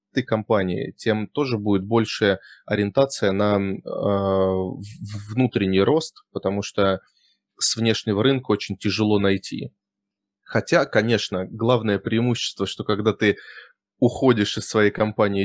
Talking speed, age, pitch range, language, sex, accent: 115 wpm, 20-39, 100-120 Hz, Russian, male, native